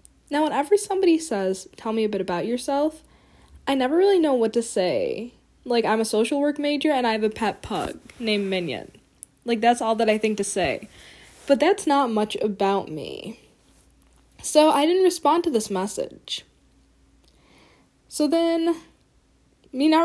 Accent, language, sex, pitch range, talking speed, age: American, English, female, 200-275 Hz, 170 wpm, 10-29